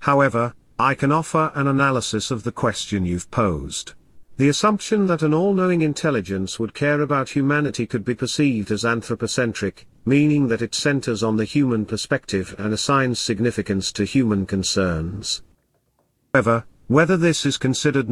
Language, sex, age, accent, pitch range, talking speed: English, male, 50-69, British, 105-140 Hz, 150 wpm